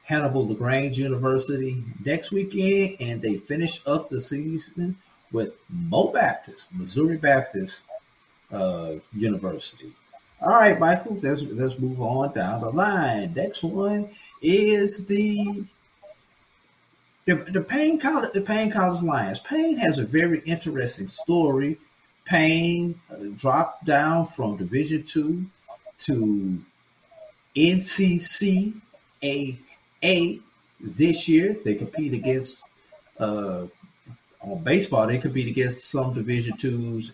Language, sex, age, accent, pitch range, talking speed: English, male, 50-69, American, 120-180 Hz, 115 wpm